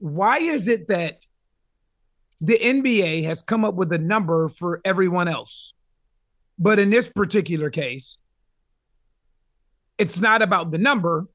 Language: English